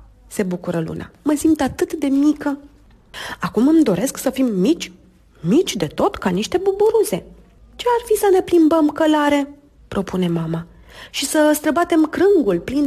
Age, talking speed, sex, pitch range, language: 30-49, 160 wpm, female, 215-350 Hz, Romanian